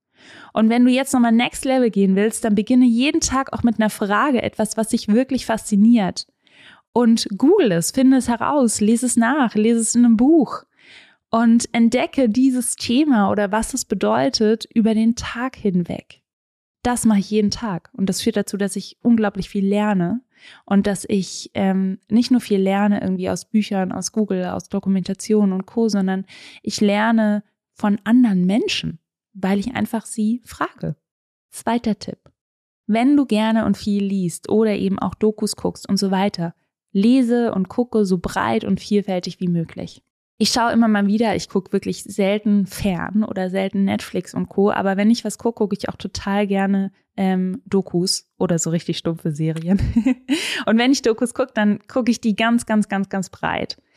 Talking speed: 180 wpm